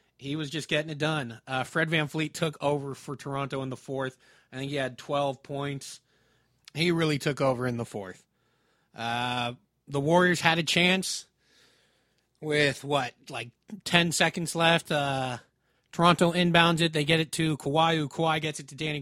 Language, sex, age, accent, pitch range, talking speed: English, male, 30-49, American, 135-160 Hz, 175 wpm